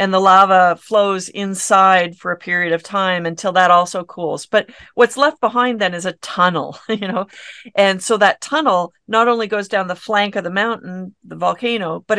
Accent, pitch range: American, 175-210 Hz